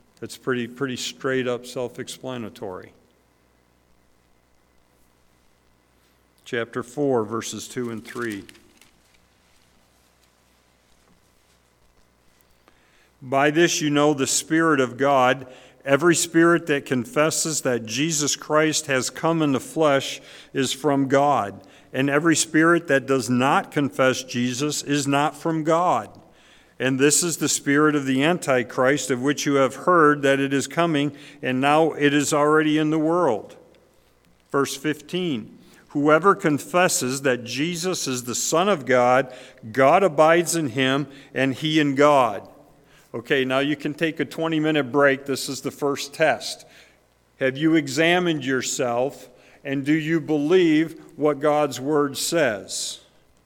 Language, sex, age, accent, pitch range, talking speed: English, male, 50-69, American, 115-150 Hz, 130 wpm